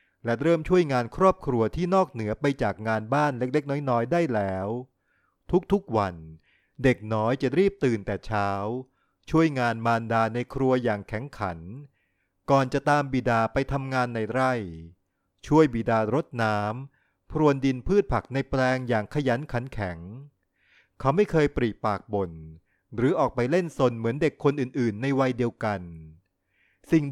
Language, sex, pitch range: Thai, male, 105-145 Hz